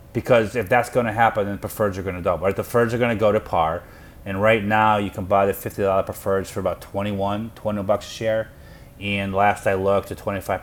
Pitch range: 90-110 Hz